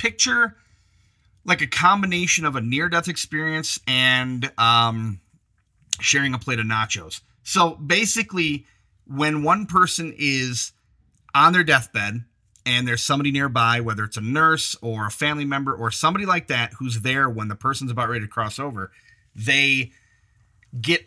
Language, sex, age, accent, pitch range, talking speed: English, male, 30-49, American, 110-150 Hz, 150 wpm